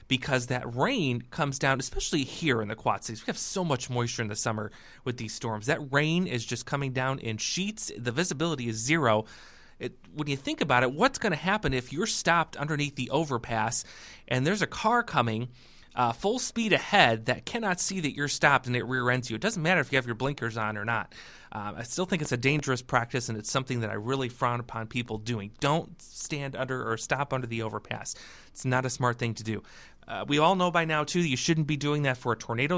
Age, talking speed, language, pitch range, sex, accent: 30-49, 235 wpm, English, 120-165 Hz, male, American